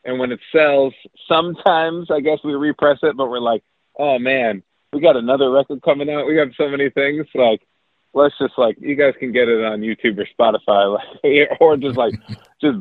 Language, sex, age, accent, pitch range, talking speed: English, male, 30-49, American, 120-150 Hz, 200 wpm